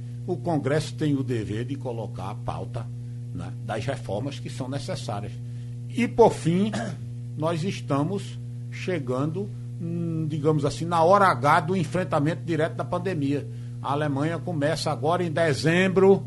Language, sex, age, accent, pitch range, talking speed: Portuguese, male, 60-79, Brazilian, 120-145 Hz, 140 wpm